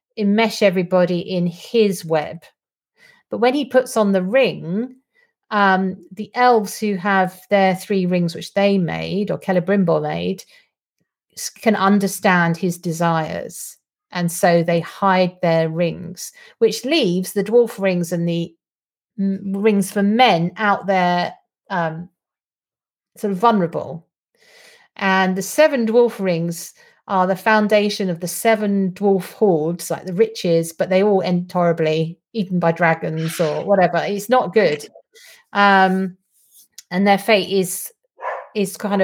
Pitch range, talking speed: 180-225 Hz, 135 wpm